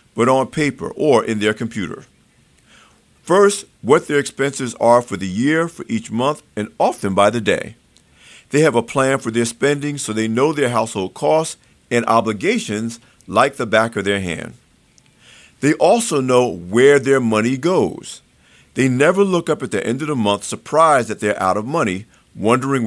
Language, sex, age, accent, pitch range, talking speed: English, male, 50-69, American, 105-145 Hz, 180 wpm